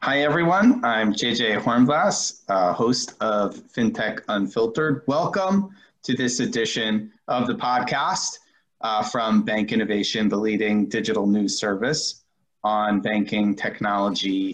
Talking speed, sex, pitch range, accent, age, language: 120 wpm, male, 110-150 Hz, American, 30-49, English